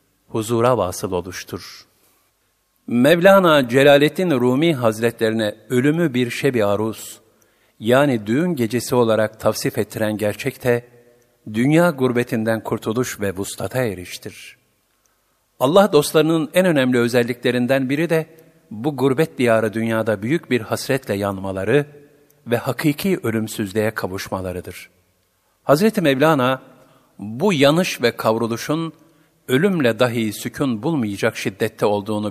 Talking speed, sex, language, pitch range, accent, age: 100 wpm, male, Turkish, 100-130 Hz, native, 50-69